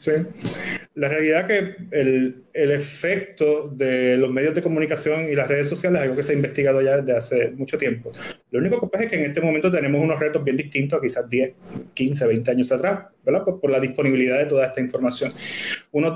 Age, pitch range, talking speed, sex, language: 30-49, 145-180 Hz, 220 wpm, male, Spanish